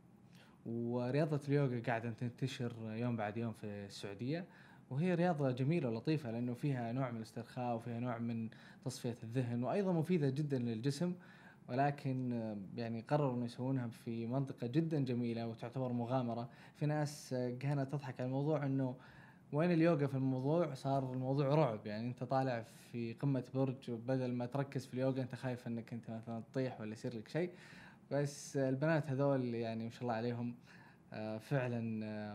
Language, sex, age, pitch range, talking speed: Arabic, male, 20-39, 115-150 Hz, 150 wpm